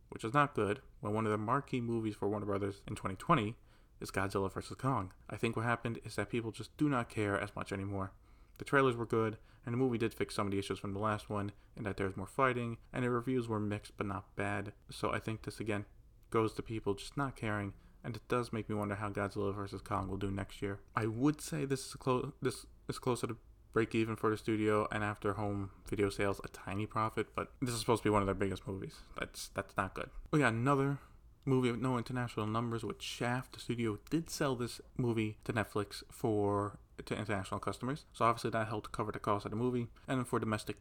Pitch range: 100-120 Hz